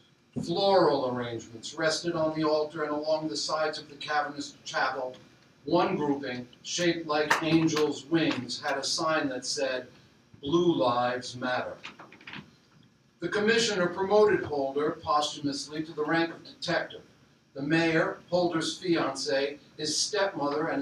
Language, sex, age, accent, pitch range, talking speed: English, male, 50-69, American, 150-180 Hz, 130 wpm